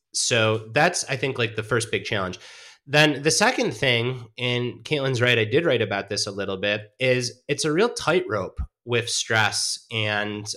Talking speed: 180 wpm